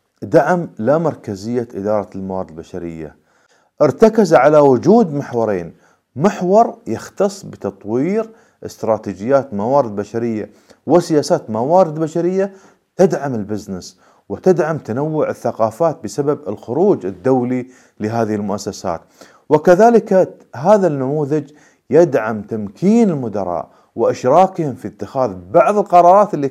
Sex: male